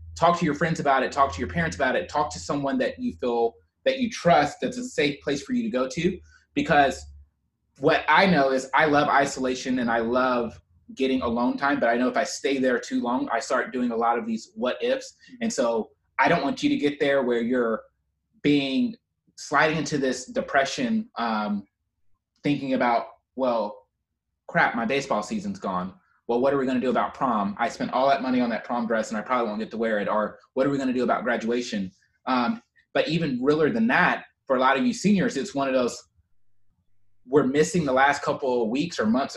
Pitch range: 115-175 Hz